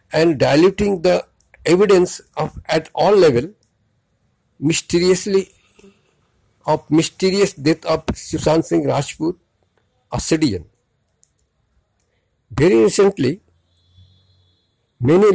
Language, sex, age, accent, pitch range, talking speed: Hindi, male, 50-69, native, 125-180 Hz, 80 wpm